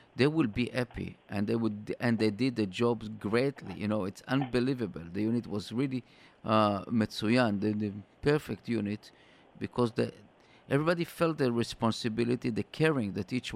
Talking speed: 165 wpm